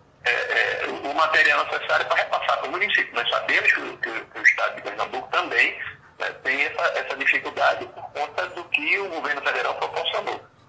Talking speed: 175 wpm